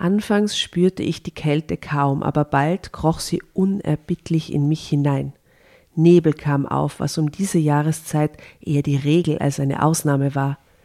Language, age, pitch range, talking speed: German, 50-69, 140-165 Hz, 155 wpm